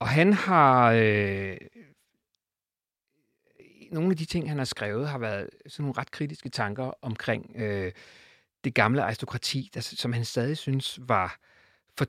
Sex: male